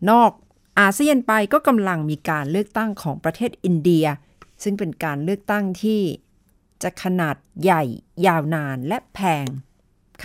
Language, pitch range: Thai, 155-215 Hz